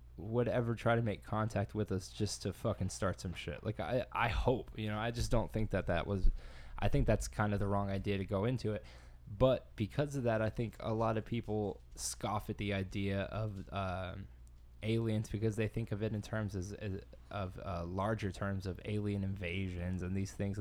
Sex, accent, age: male, American, 20-39